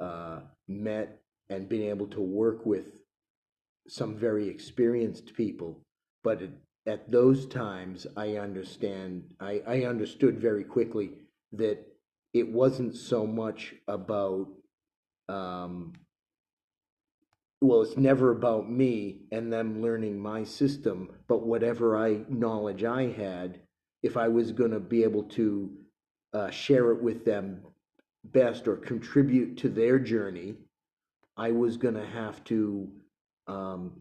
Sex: male